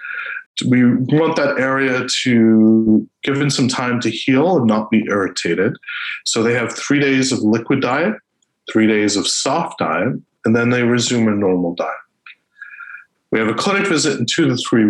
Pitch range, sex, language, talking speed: 105-140 Hz, male, English, 175 wpm